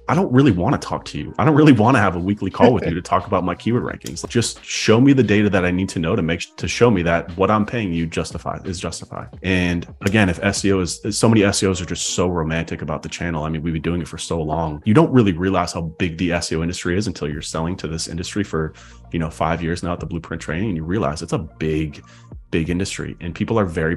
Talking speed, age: 275 wpm, 30-49